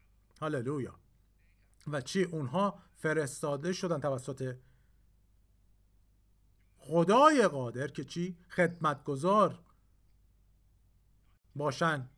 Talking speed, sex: 70 wpm, male